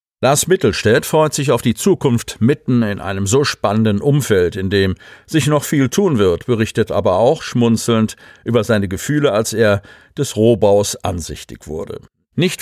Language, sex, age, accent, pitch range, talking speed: German, male, 50-69, German, 100-130 Hz, 160 wpm